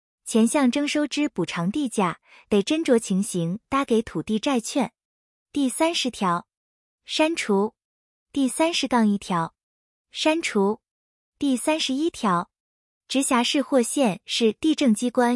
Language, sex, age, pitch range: Chinese, female, 20-39, 200-285 Hz